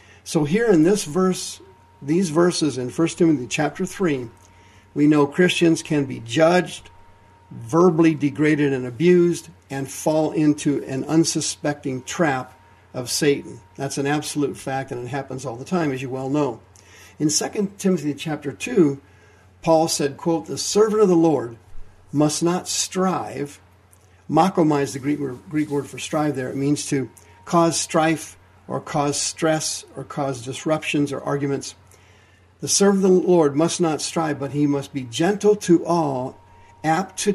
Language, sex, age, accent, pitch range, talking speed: English, male, 50-69, American, 115-165 Hz, 155 wpm